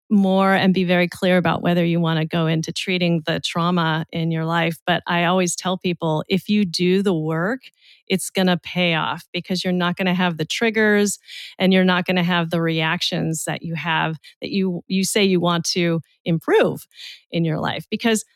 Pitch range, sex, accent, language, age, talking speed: 170-210 Hz, female, American, English, 30-49, 210 wpm